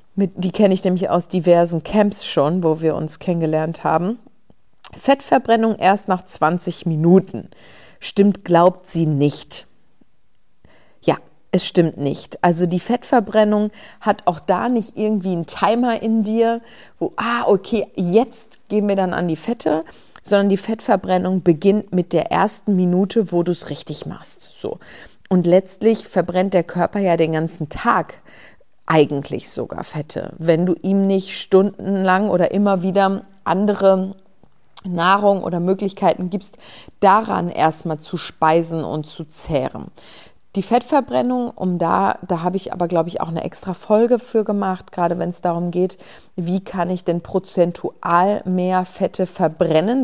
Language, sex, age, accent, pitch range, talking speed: German, female, 50-69, German, 170-205 Hz, 145 wpm